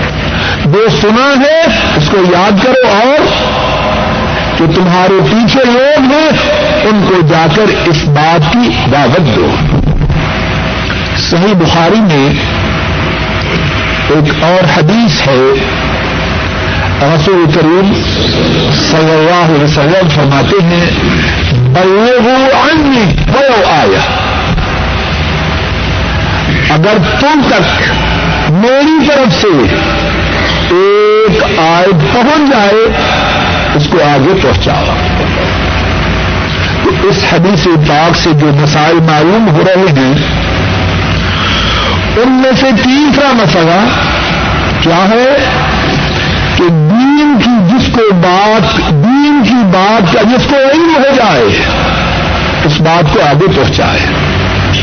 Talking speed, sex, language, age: 100 wpm, male, Urdu, 60-79